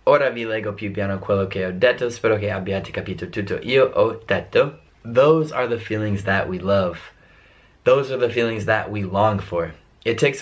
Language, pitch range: Italian, 95-120 Hz